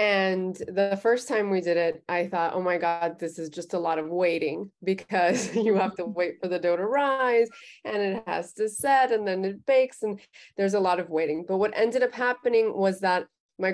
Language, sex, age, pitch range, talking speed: English, female, 20-39, 170-205 Hz, 225 wpm